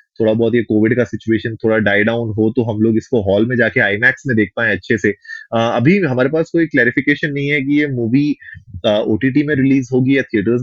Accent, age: native, 20-39